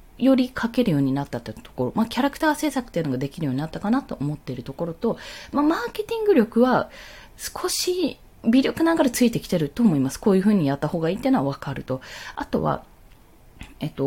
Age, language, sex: 20-39, Japanese, female